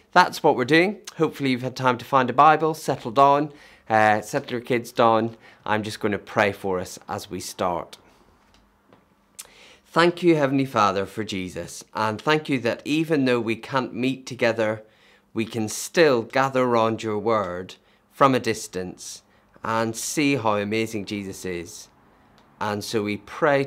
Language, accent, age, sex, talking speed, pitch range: English, British, 30-49, male, 165 wpm, 110-140 Hz